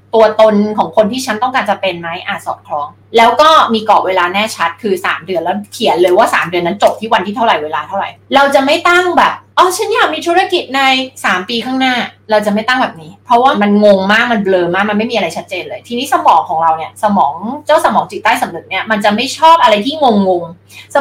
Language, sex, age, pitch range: Thai, female, 20-39, 200-280 Hz